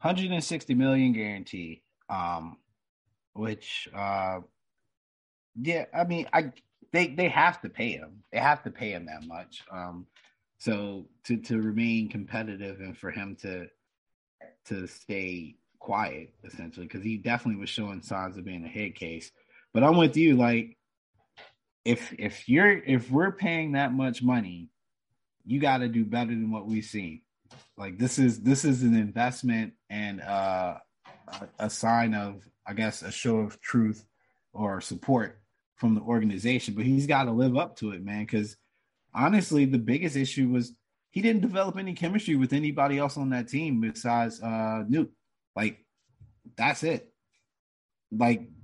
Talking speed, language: 160 wpm, English